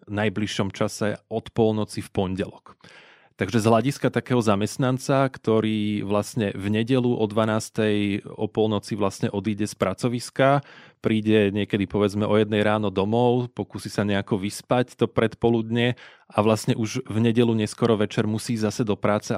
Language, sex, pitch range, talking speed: Slovak, male, 100-115 Hz, 145 wpm